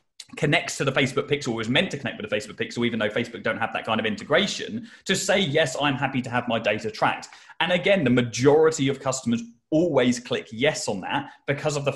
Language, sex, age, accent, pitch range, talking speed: English, male, 20-39, British, 125-165 Hz, 235 wpm